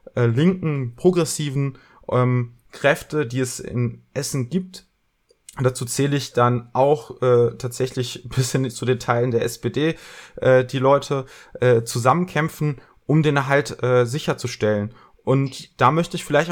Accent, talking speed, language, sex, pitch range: German, 140 wpm, German, male, 125-150 Hz